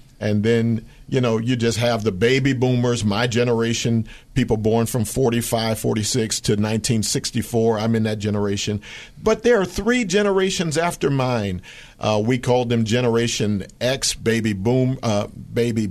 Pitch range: 110-135 Hz